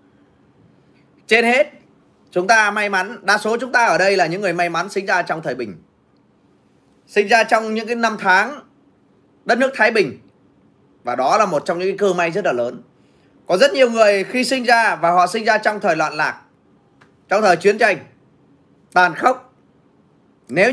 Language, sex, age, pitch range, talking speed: Vietnamese, male, 20-39, 170-220 Hz, 195 wpm